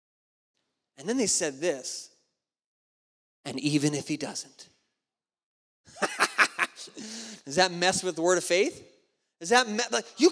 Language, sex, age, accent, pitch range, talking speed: English, male, 30-49, American, 160-230 Hz, 120 wpm